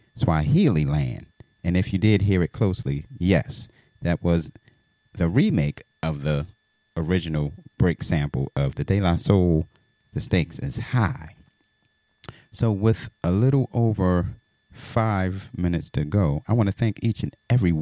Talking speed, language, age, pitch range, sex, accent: 150 wpm, English, 30-49, 85-115 Hz, male, American